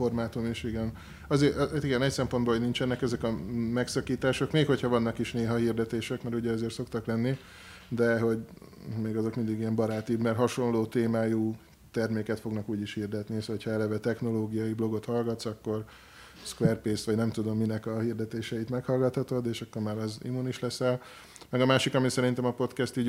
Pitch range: 110-120 Hz